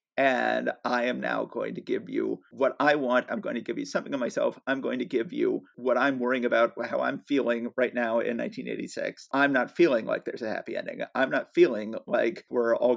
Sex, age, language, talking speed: male, 40-59, English, 225 wpm